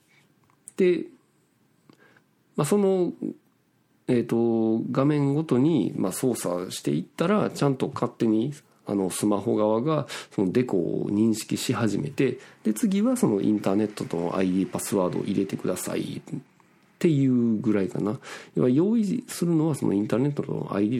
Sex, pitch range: male, 105-165 Hz